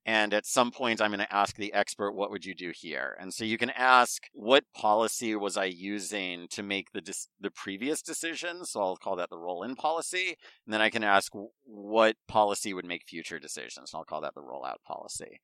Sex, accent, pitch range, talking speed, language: male, American, 95-125 Hz, 225 wpm, English